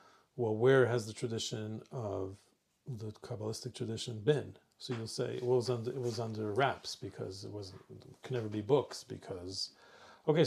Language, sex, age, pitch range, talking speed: English, male, 40-59, 115-155 Hz, 170 wpm